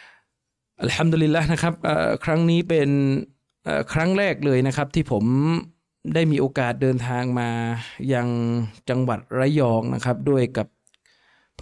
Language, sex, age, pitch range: Thai, male, 20-39, 125-155 Hz